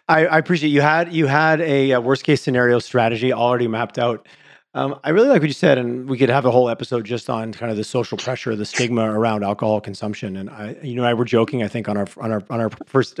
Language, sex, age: English, male, 30-49